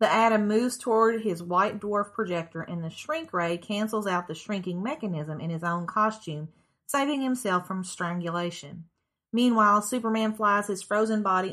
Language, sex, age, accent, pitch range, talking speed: English, female, 40-59, American, 175-220 Hz, 160 wpm